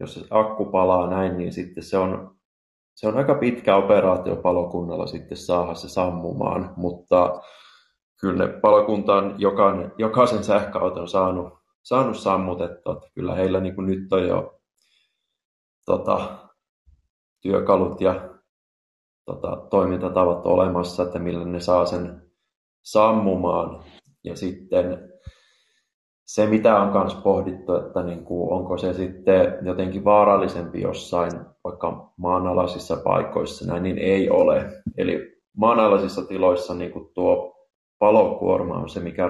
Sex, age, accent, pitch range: male, 20-39, native, 90-100 Hz